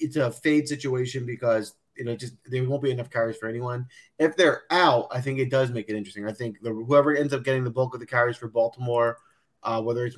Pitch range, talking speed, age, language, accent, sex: 115-145 Hz, 250 wpm, 30-49, English, American, male